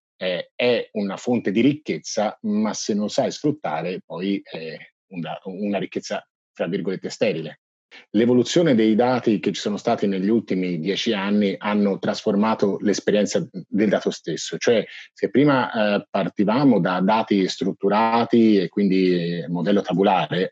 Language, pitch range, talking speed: English, 95-125 Hz, 135 wpm